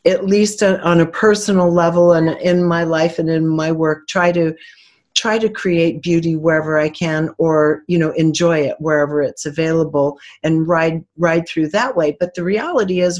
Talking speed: 185 wpm